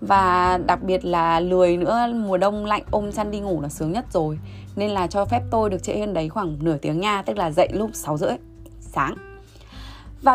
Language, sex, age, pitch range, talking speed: Vietnamese, female, 20-39, 160-210 Hz, 220 wpm